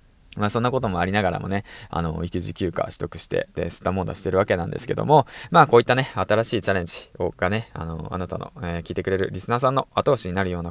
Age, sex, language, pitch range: 20-39, male, Japanese, 95-120 Hz